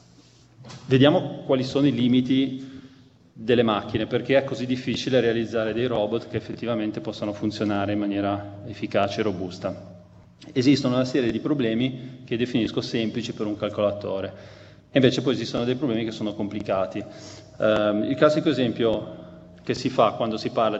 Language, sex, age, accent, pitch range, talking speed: Italian, male, 30-49, native, 100-125 Hz, 145 wpm